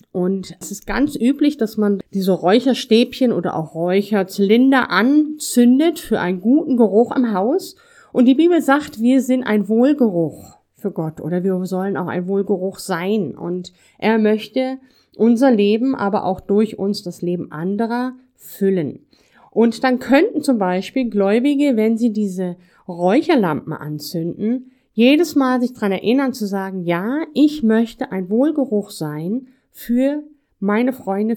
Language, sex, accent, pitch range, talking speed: English, female, German, 190-260 Hz, 145 wpm